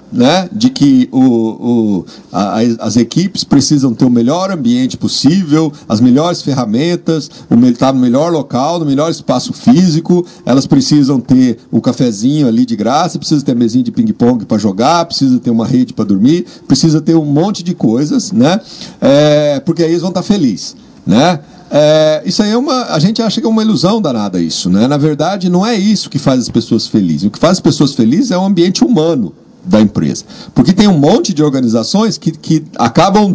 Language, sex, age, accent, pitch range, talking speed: Portuguese, male, 50-69, Brazilian, 140-215 Hz, 175 wpm